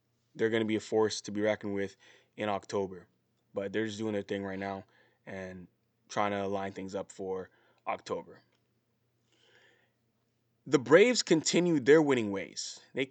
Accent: American